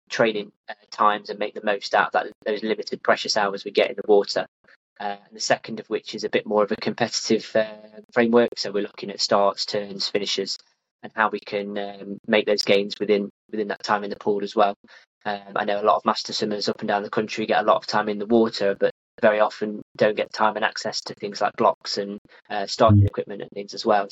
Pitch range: 100-110 Hz